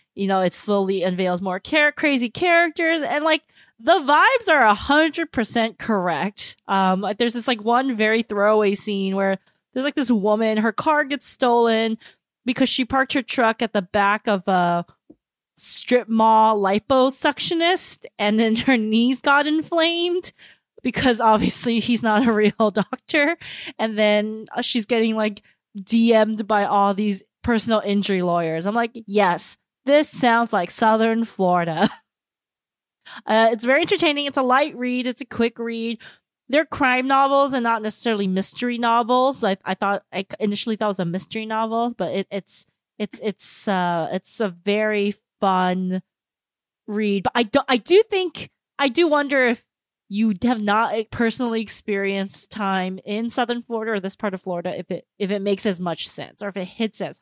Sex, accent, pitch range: female, American, 200-255 Hz